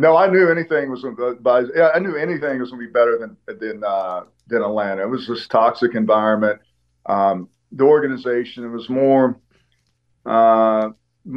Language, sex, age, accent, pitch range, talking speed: English, male, 40-59, American, 105-135 Hz, 160 wpm